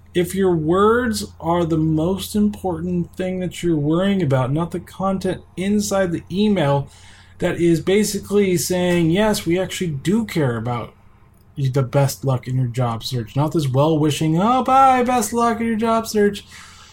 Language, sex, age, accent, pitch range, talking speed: English, male, 20-39, American, 125-170 Hz, 165 wpm